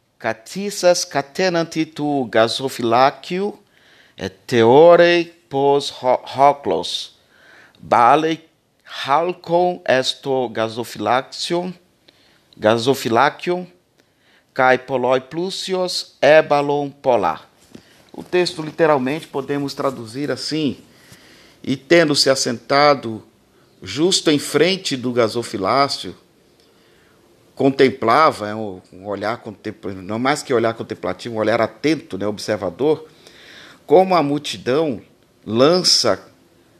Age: 50-69